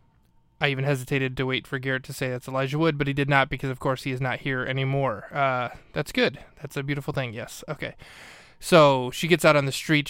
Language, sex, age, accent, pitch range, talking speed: English, male, 20-39, American, 130-145 Hz, 240 wpm